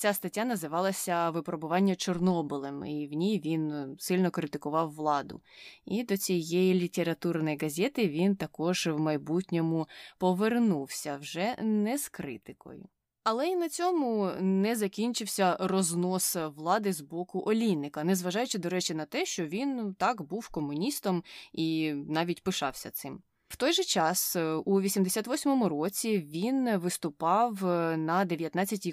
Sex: female